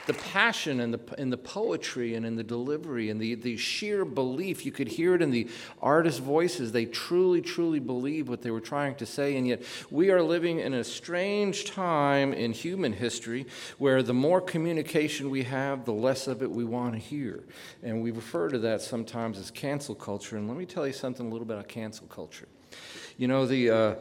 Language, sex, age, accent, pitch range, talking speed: English, male, 50-69, American, 120-155 Hz, 210 wpm